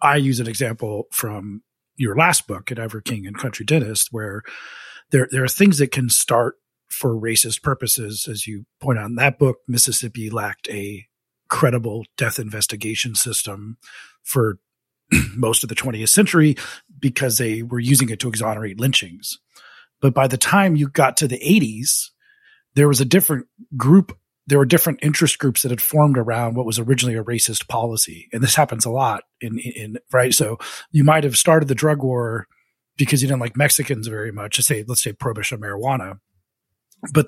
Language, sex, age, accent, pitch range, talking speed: English, male, 40-59, American, 115-145 Hz, 180 wpm